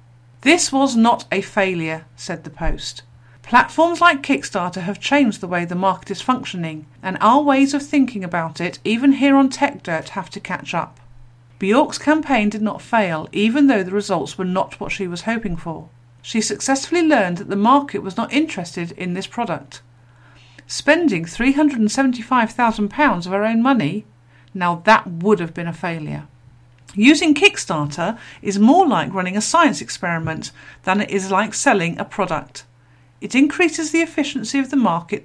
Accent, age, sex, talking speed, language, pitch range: British, 50-69, female, 170 wpm, English, 165-260 Hz